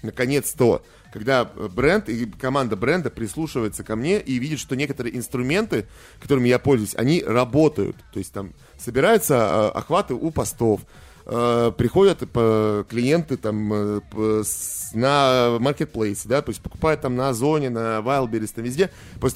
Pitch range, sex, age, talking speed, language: 115-170 Hz, male, 30-49, 135 wpm, Russian